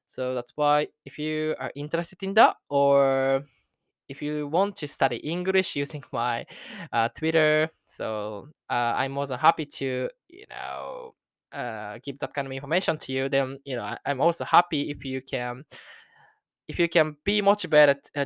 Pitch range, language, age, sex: 130-165 Hz, Japanese, 20-39, male